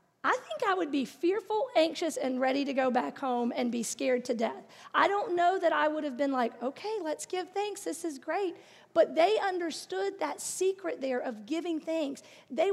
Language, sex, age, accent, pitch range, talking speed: English, female, 40-59, American, 240-305 Hz, 205 wpm